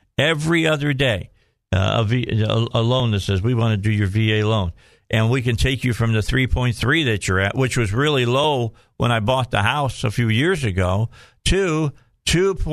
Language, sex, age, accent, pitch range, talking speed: English, male, 50-69, American, 110-140 Hz, 205 wpm